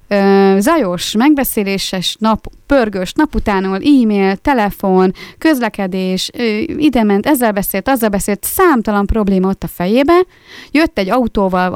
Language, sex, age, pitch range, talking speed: Hungarian, female, 30-49, 185-245 Hz, 110 wpm